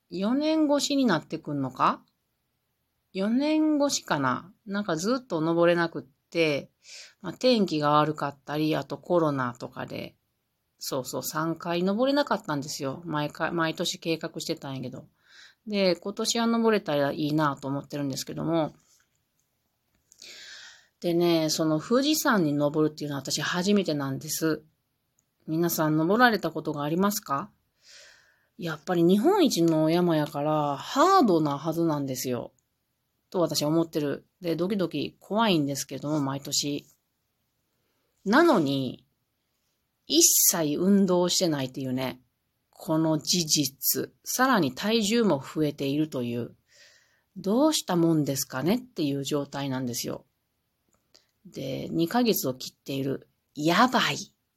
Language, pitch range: Japanese, 145-200 Hz